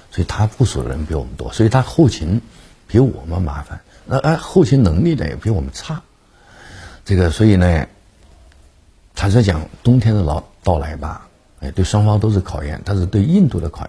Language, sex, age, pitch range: Chinese, male, 50-69, 80-115 Hz